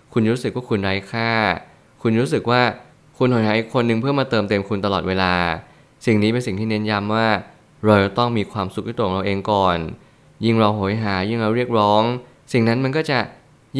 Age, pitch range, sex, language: 20-39, 100-120 Hz, male, Thai